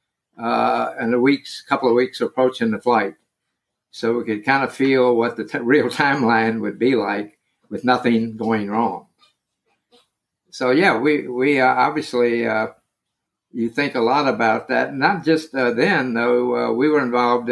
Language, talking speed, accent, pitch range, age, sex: English, 170 wpm, American, 115-135 Hz, 60-79, male